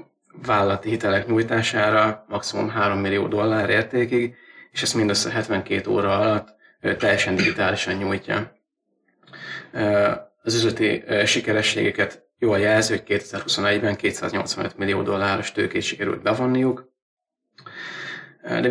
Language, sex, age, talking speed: Hungarian, male, 30-49, 100 wpm